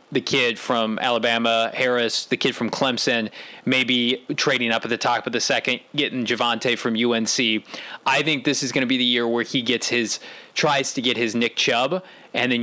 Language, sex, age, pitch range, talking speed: English, male, 20-39, 120-140 Hz, 205 wpm